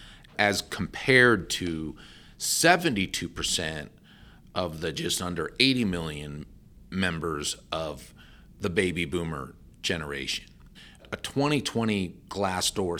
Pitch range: 80-120 Hz